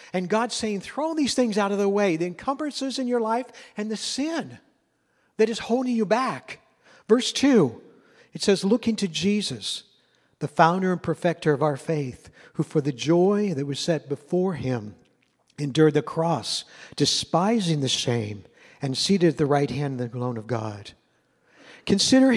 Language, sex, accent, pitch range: English, male, American, 150-205 Hz